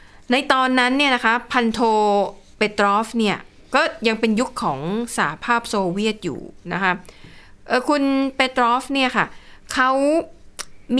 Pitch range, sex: 190-245 Hz, female